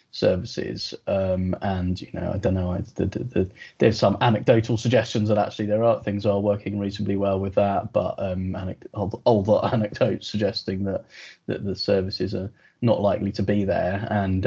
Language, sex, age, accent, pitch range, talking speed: English, male, 20-39, British, 90-105 Hz, 195 wpm